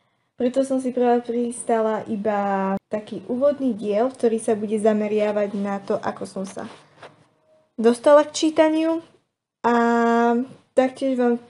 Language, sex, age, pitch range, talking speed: Slovak, female, 10-29, 215-255 Hz, 125 wpm